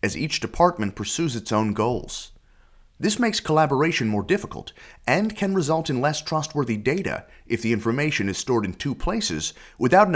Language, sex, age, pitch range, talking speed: English, male, 30-49, 95-155 Hz, 170 wpm